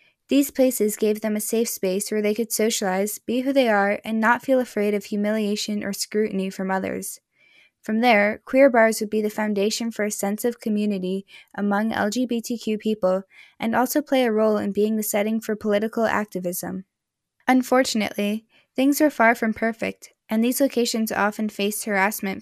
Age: 10-29